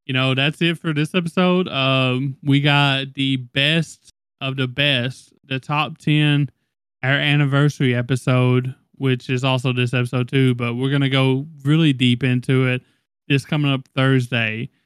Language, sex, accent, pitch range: English, male, American, 125-150 Hz